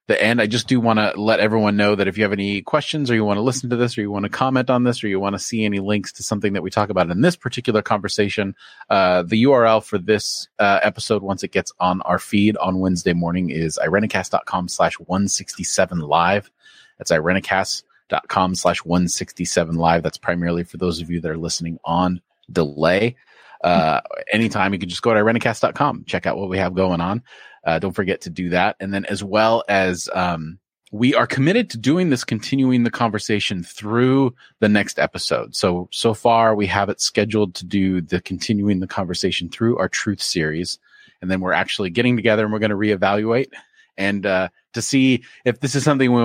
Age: 30-49